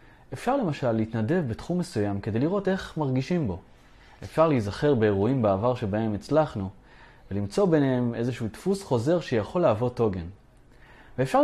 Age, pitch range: 20-39, 110-155 Hz